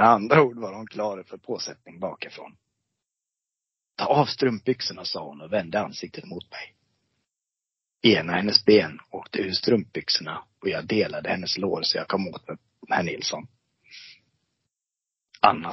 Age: 30-49